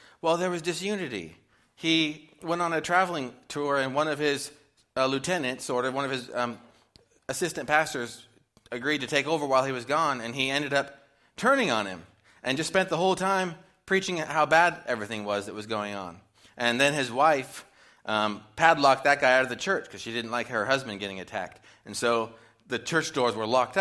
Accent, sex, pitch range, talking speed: American, male, 120-160 Hz, 205 wpm